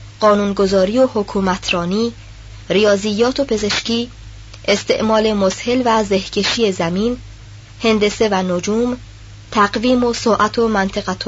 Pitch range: 170-225 Hz